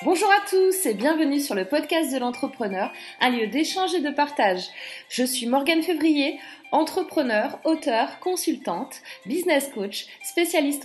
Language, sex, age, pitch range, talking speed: French, female, 30-49, 240-315 Hz, 145 wpm